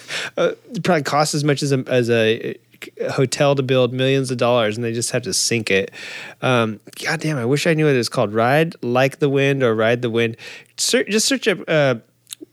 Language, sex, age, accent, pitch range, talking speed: English, male, 20-39, American, 125-160 Hz, 215 wpm